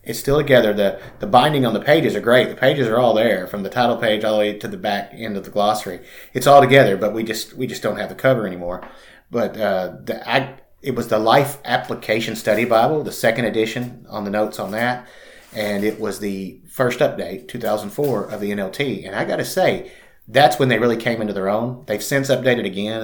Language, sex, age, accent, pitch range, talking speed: English, male, 30-49, American, 105-130 Hz, 230 wpm